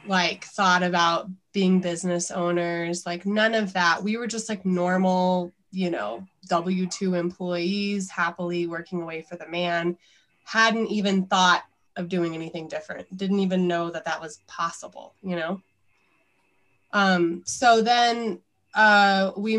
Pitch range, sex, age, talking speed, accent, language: 180-210 Hz, female, 20-39, 140 wpm, American, English